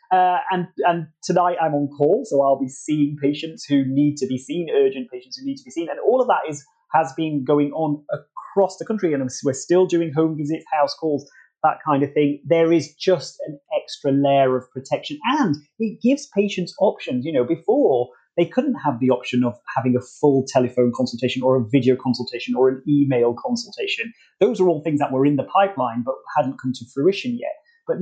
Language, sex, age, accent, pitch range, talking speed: English, male, 30-49, British, 130-185 Hz, 210 wpm